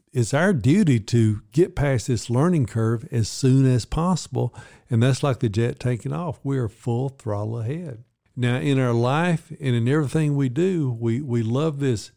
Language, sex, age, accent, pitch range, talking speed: English, male, 50-69, American, 115-135 Hz, 185 wpm